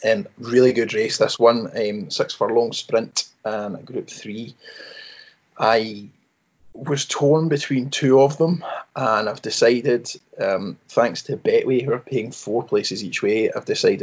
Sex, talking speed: male, 160 wpm